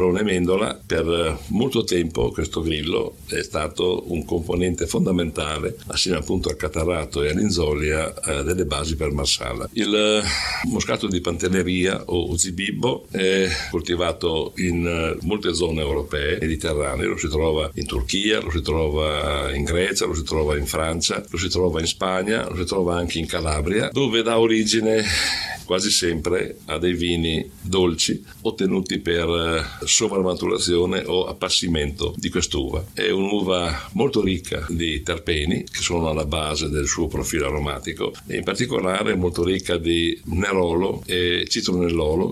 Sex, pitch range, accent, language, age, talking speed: male, 80-95 Hz, Italian, English, 60-79, 140 wpm